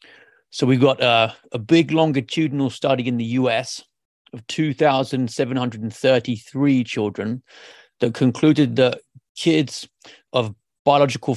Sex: male